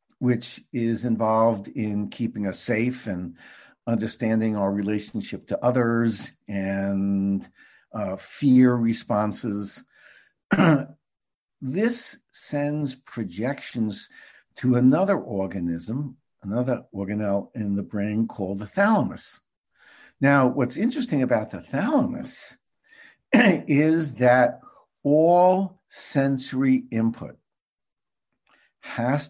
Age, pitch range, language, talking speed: 60-79, 105-135 Hz, English, 90 wpm